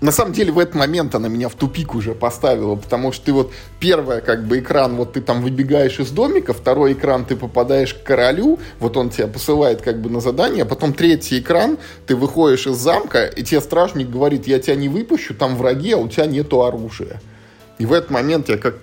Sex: male